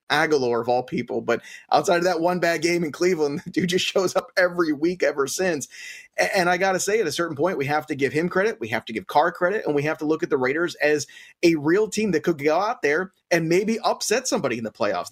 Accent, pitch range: American, 145-175 Hz